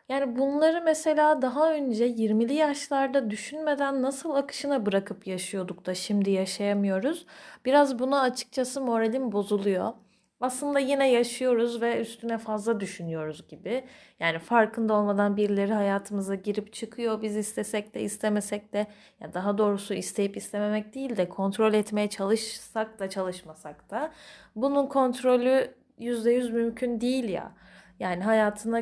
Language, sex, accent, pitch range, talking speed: Turkish, female, native, 205-265 Hz, 125 wpm